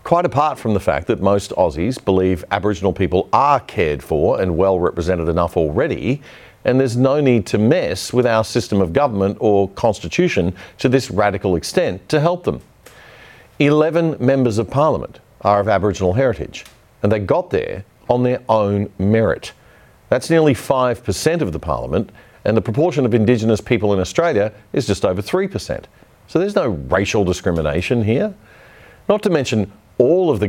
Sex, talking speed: male, 165 wpm